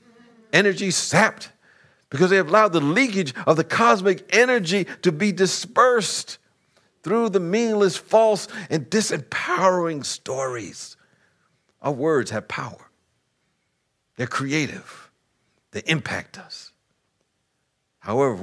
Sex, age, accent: male, 60-79, American